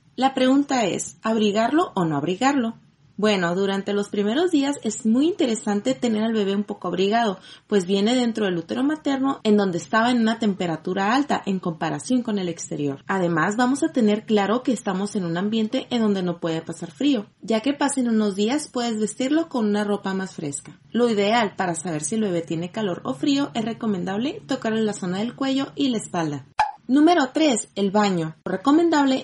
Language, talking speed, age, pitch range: Spanish, 195 wpm, 30-49, 190-245 Hz